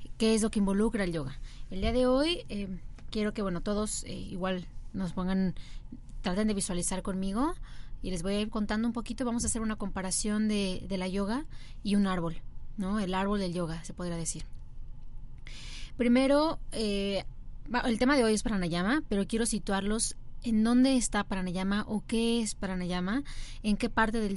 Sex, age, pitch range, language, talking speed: female, 20-39, 190-230 Hz, Spanish, 185 wpm